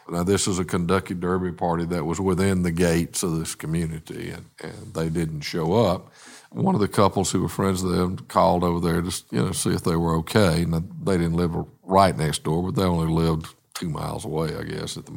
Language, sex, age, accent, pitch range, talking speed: English, male, 50-69, American, 85-100 Hz, 235 wpm